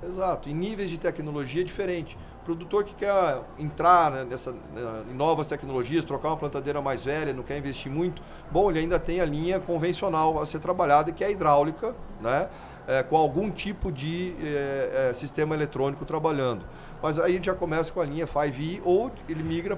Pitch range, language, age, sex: 140-175 Hz, Portuguese, 40-59, male